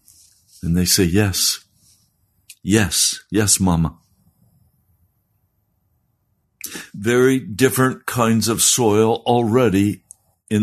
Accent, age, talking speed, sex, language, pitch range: American, 60-79, 80 wpm, male, English, 95-115 Hz